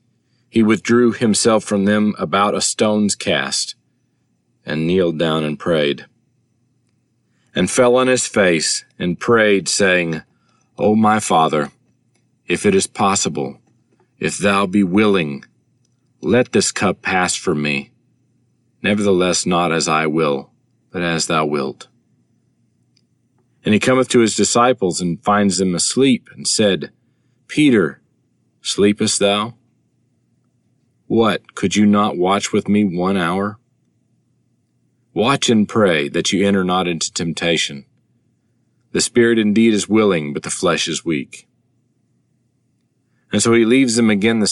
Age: 40-59